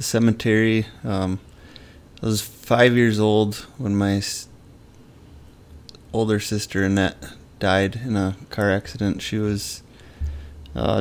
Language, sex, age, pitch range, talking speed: English, male, 20-39, 95-110 Hz, 110 wpm